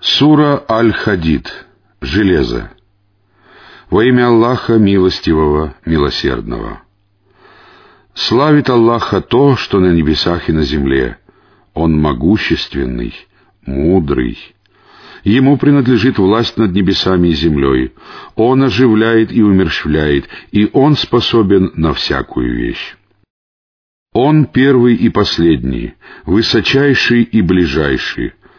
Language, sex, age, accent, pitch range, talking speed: Russian, male, 50-69, native, 85-125 Hz, 95 wpm